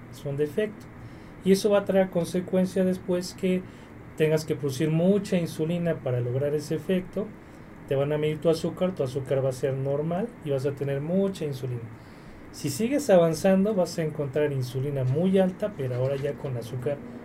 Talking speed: 180 wpm